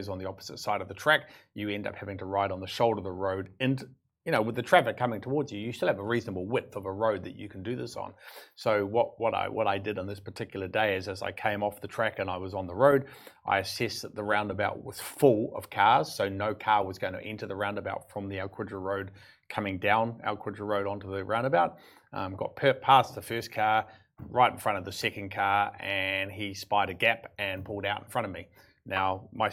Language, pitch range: Arabic, 95-110 Hz